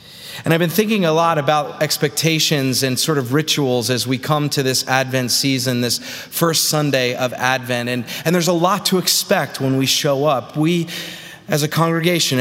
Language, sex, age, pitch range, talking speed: English, male, 30-49, 135-165 Hz, 190 wpm